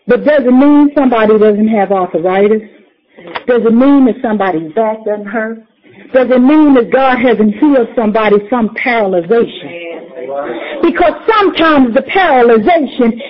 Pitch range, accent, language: 230-385 Hz, American, English